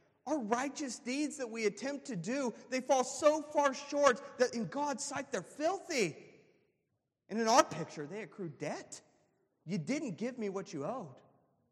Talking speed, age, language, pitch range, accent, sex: 170 wpm, 30-49, English, 155-235 Hz, American, male